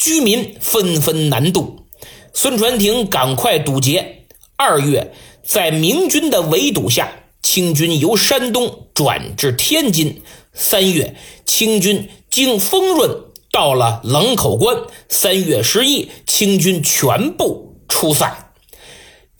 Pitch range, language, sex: 155-225 Hz, Chinese, male